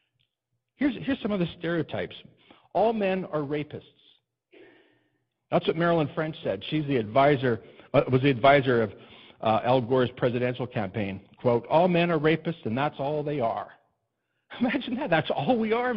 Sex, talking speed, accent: male, 155 wpm, American